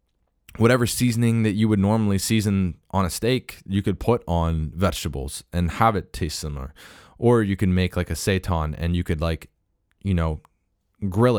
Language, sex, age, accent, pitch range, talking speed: English, male, 20-39, American, 80-100 Hz, 180 wpm